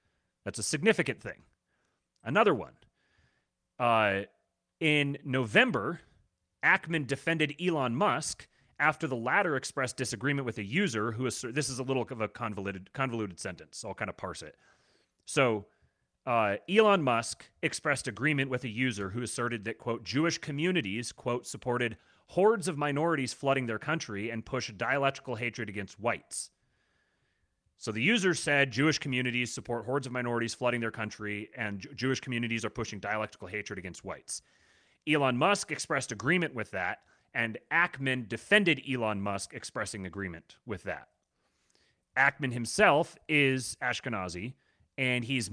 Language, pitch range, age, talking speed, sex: English, 115-150 Hz, 30-49, 140 wpm, male